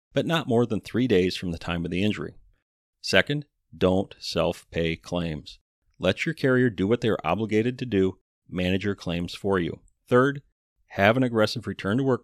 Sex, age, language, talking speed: male, 40-59, English, 175 wpm